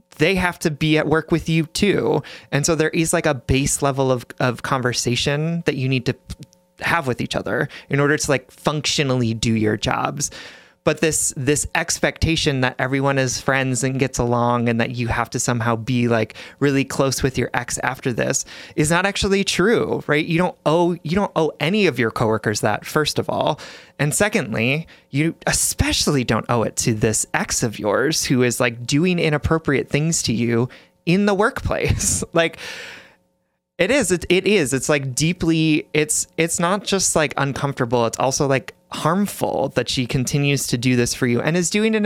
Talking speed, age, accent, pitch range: 195 wpm, 30-49, American, 125-160 Hz